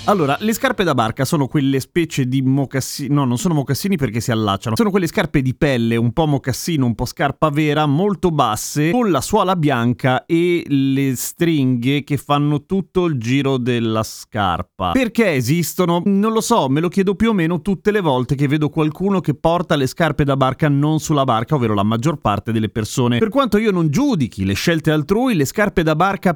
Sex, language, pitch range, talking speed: male, Italian, 130-180 Hz, 205 wpm